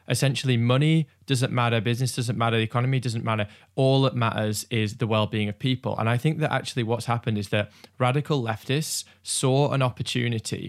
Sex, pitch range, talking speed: male, 110-130 Hz, 185 wpm